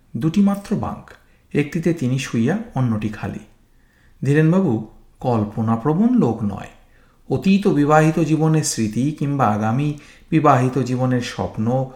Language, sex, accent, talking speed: Bengali, male, native, 110 wpm